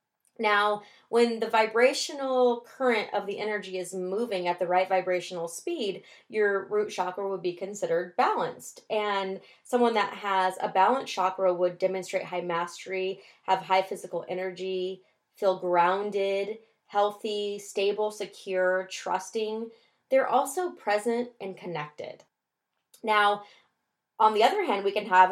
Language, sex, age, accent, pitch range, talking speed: English, female, 20-39, American, 185-210 Hz, 135 wpm